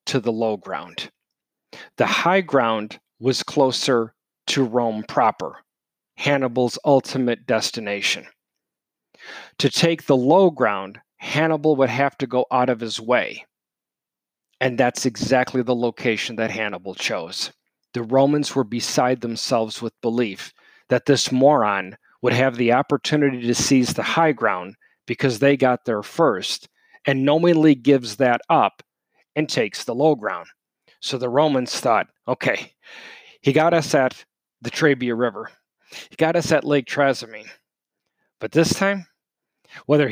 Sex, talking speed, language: male, 140 wpm, English